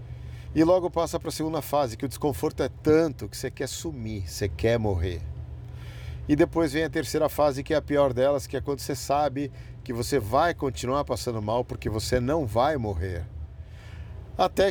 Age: 50-69